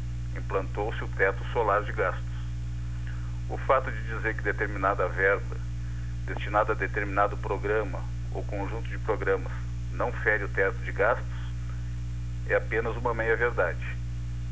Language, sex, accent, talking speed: Portuguese, male, Brazilian, 130 wpm